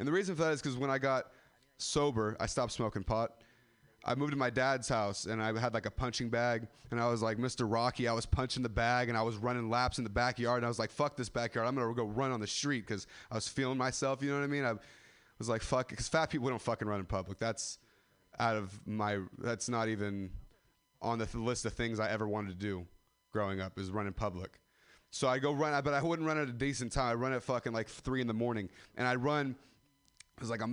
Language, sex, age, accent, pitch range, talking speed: English, male, 30-49, American, 110-135 Hz, 265 wpm